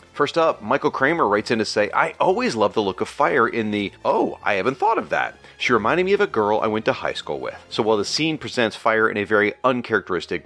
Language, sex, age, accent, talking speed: English, male, 40-59, American, 260 wpm